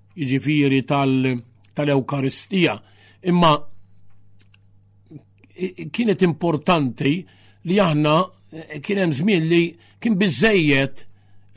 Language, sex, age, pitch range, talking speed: English, male, 50-69, 125-170 Hz, 80 wpm